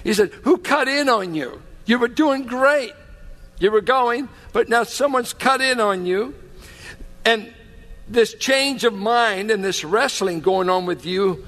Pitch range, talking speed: 180-235 Hz, 175 wpm